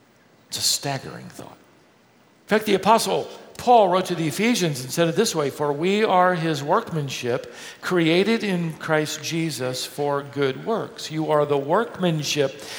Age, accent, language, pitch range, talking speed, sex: 50-69, American, English, 165-270 Hz, 160 wpm, male